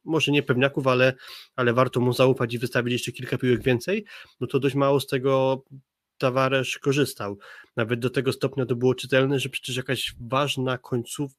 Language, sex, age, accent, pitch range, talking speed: Polish, male, 20-39, native, 125-140 Hz, 180 wpm